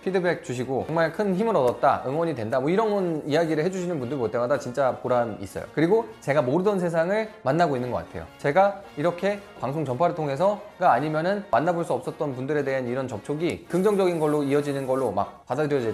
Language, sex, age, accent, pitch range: Korean, male, 20-39, native, 120-170 Hz